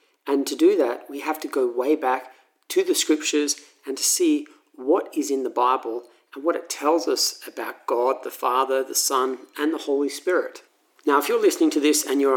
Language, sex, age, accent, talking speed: English, male, 40-59, Australian, 215 wpm